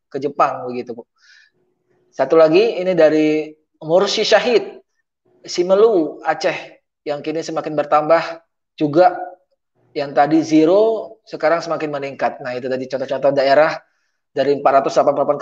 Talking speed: 115 wpm